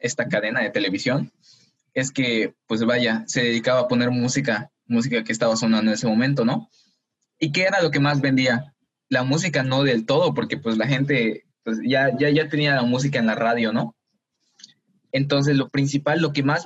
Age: 20-39